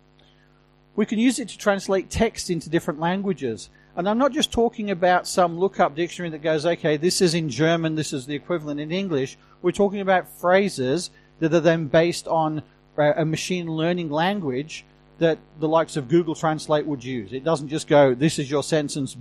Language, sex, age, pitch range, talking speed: English, male, 40-59, 145-195 Hz, 190 wpm